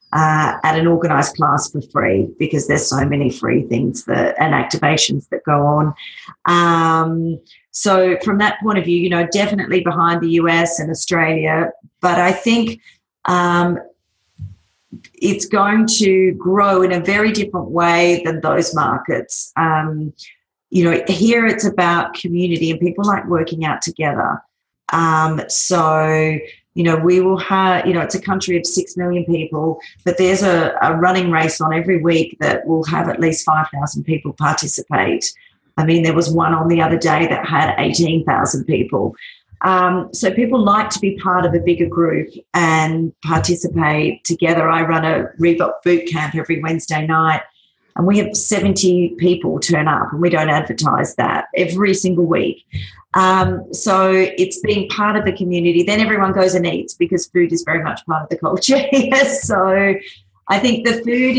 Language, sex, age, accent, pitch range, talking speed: English, female, 40-59, Australian, 160-190 Hz, 170 wpm